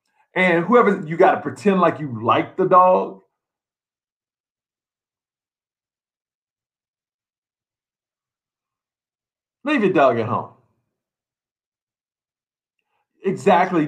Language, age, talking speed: English, 50-69, 75 wpm